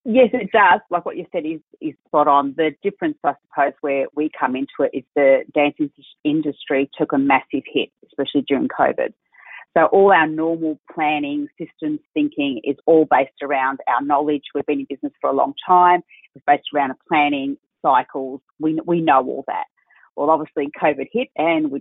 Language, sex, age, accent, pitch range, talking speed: English, female, 30-49, Australian, 140-175 Hz, 190 wpm